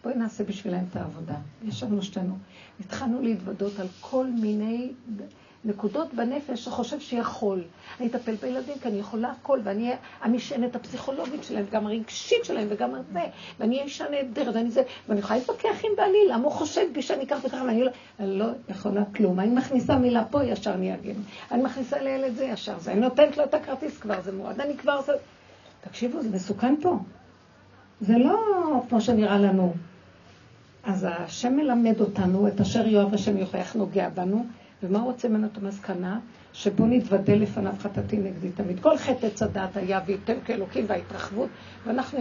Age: 60-79